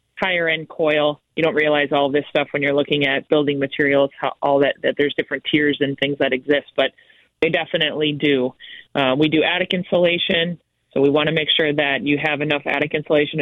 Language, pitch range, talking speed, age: English, 135-155 Hz, 210 wpm, 30-49